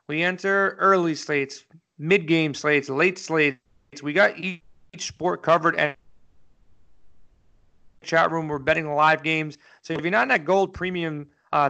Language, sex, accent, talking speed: English, male, American, 150 wpm